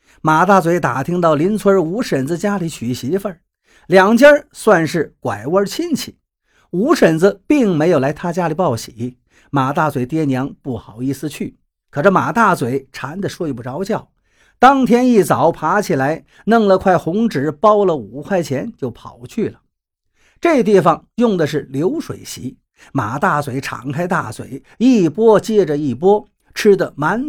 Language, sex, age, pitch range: Chinese, male, 50-69, 145-225 Hz